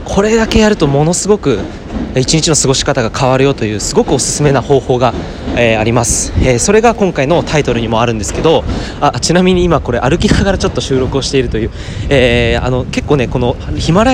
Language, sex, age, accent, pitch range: Japanese, male, 20-39, native, 110-175 Hz